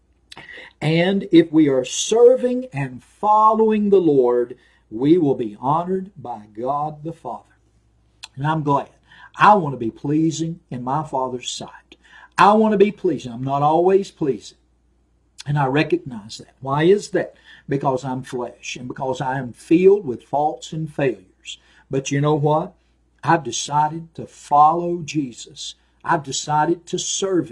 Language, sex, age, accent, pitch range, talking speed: English, male, 50-69, American, 125-160 Hz, 155 wpm